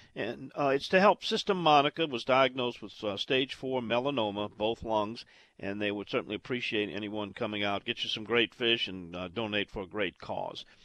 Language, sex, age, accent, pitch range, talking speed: English, male, 50-69, American, 110-160 Hz, 200 wpm